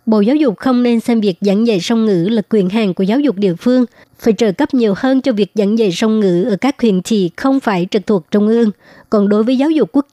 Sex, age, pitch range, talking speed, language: male, 60-79, 200-235 Hz, 275 wpm, Vietnamese